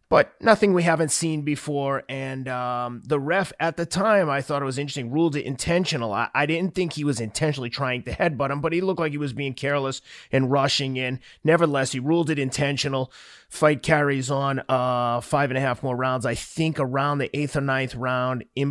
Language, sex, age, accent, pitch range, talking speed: English, male, 30-49, American, 130-155 Hz, 215 wpm